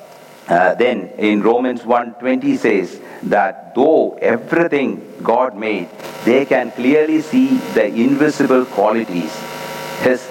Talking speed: 110 wpm